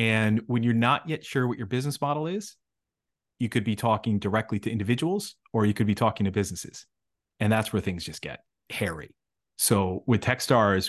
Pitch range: 100-120 Hz